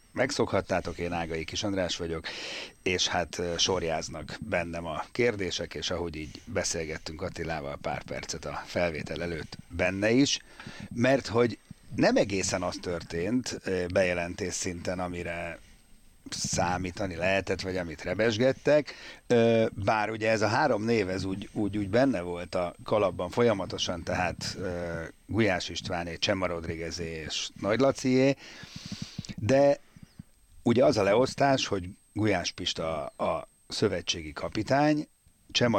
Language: Hungarian